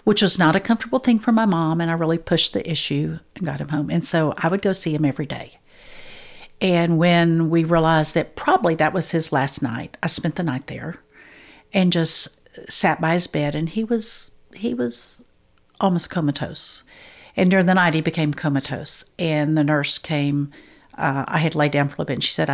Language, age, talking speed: English, 50-69, 210 wpm